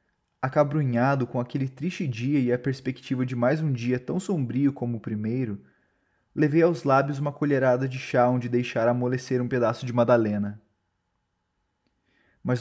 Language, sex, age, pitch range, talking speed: Portuguese, male, 20-39, 115-145 Hz, 150 wpm